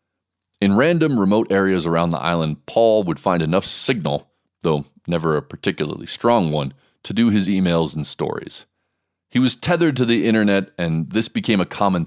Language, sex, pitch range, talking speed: English, male, 80-105 Hz, 175 wpm